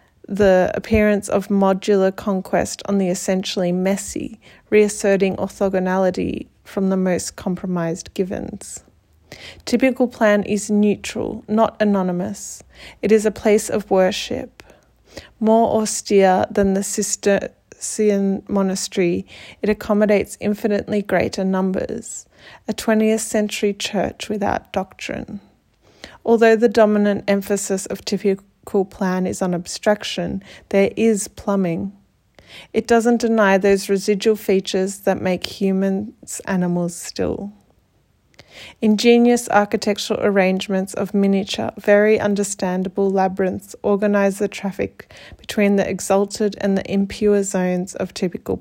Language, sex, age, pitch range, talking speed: English, female, 30-49, 190-210 Hz, 110 wpm